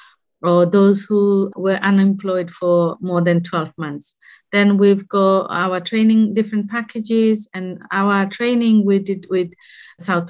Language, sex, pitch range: English, female, 180-210 Hz